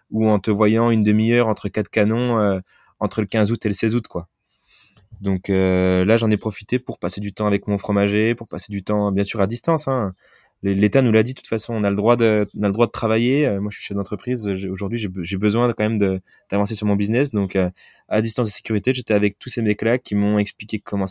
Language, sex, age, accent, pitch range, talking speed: French, male, 20-39, French, 95-110 Hz, 265 wpm